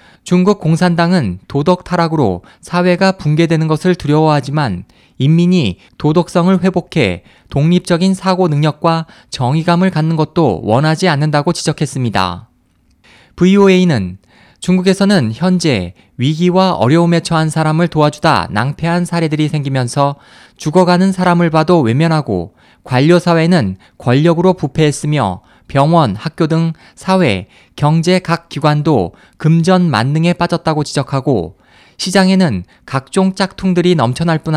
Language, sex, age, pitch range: Korean, male, 20-39, 140-180 Hz